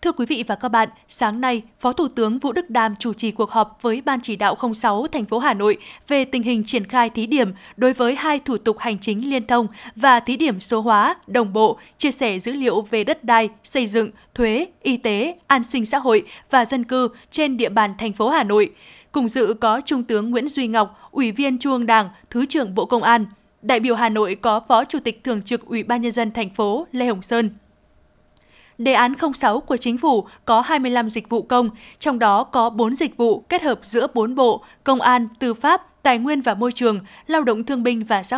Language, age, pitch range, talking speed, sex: Vietnamese, 20-39, 220-260 Hz, 235 wpm, female